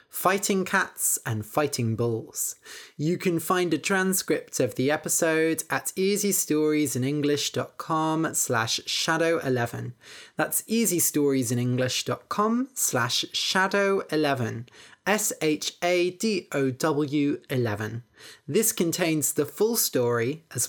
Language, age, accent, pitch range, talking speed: English, 20-39, British, 135-170 Hz, 85 wpm